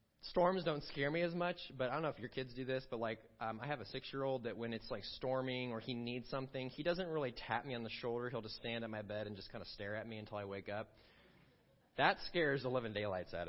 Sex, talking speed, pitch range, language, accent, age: male, 275 wpm, 115-160 Hz, English, American, 30-49